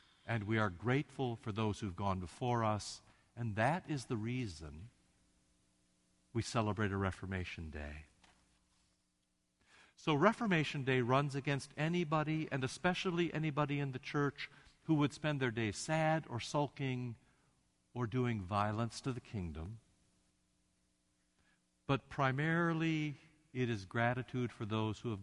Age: 60-79